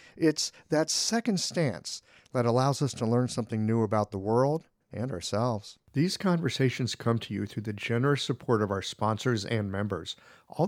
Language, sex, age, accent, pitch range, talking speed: English, male, 50-69, American, 110-155 Hz, 175 wpm